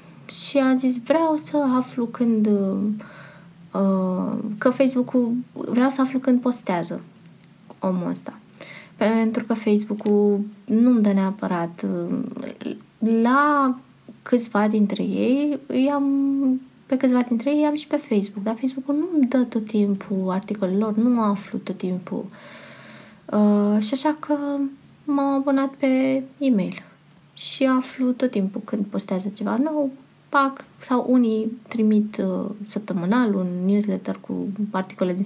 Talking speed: 130 wpm